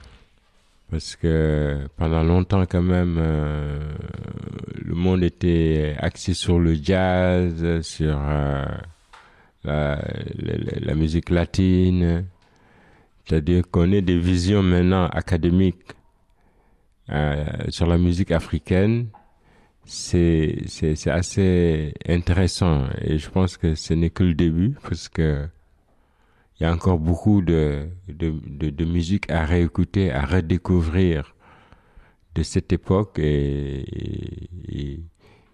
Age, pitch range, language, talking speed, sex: 60-79, 80-95 Hz, French, 110 wpm, male